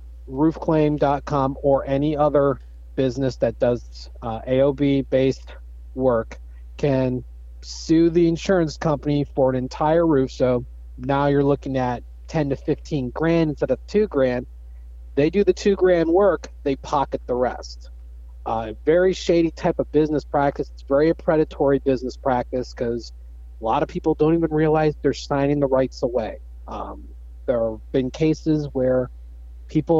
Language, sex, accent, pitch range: English, male, American, 115-150 Hz